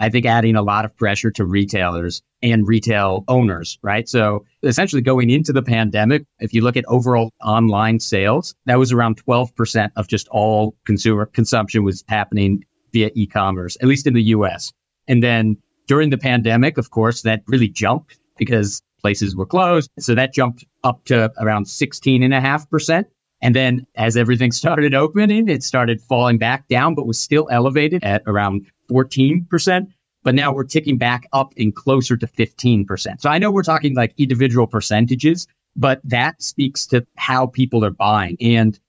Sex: male